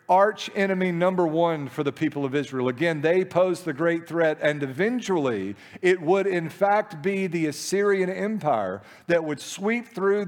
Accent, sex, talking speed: American, male, 170 wpm